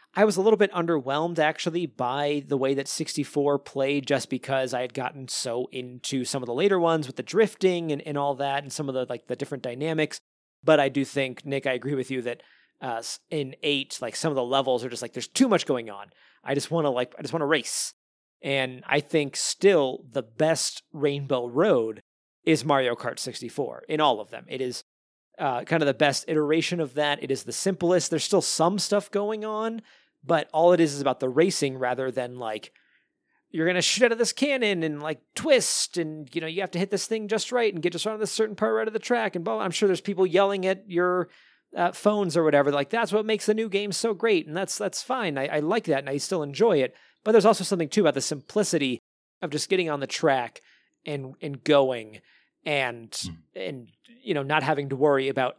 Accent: American